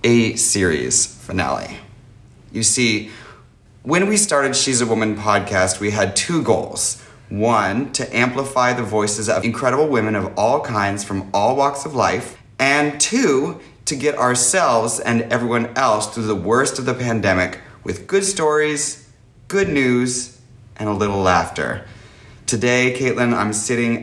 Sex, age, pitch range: male, 30-49, 105-135 Hz